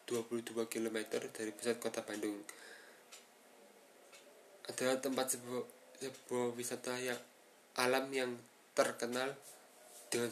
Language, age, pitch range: Indonesian, 20-39, 115-125 Hz